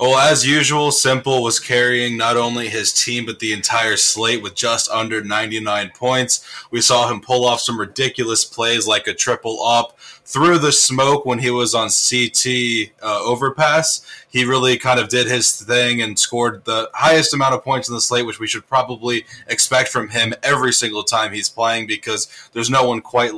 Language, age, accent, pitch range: English, 20-39, American, 115-130 Hz